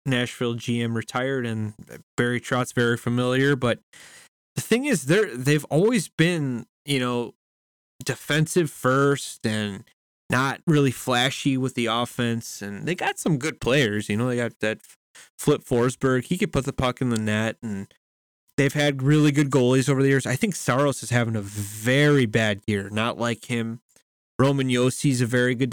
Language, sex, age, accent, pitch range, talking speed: English, male, 20-39, American, 115-145 Hz, 175 wpm